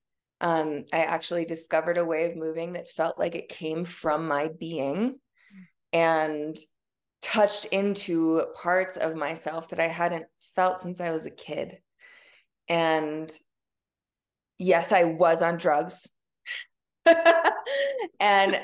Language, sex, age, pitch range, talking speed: English, female, 20-39, 170-235 Hz, 120 wpm